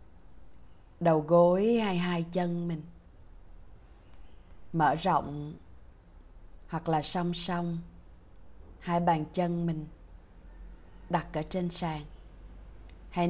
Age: 20-39